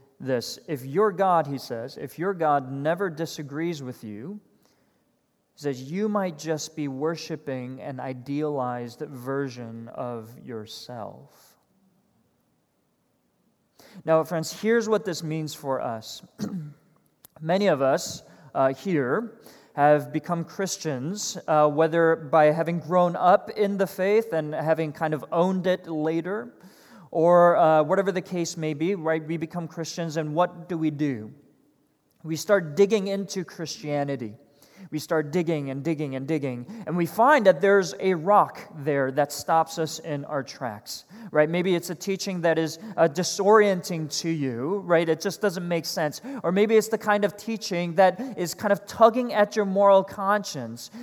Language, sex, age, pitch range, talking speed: English, male, 40-59, 155-205 Hz, 155 wpm